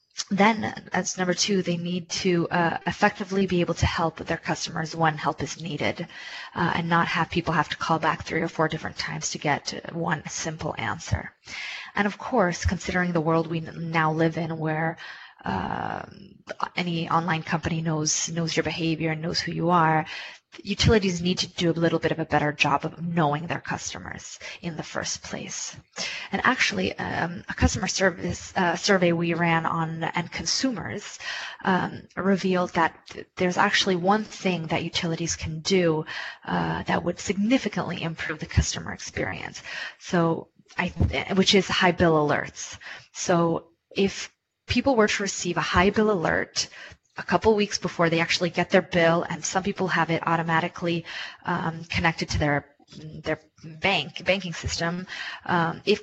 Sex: female